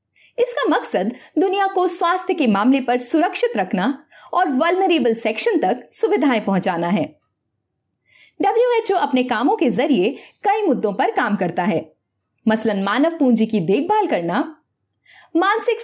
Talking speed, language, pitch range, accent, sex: 135 wpm, Hindi, 215-350 Hz, native, female